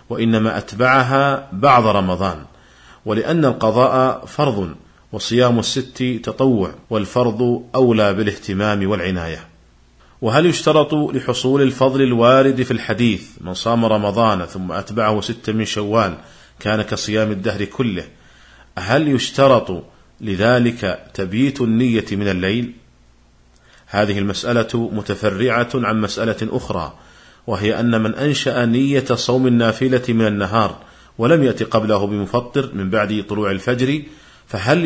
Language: Arabic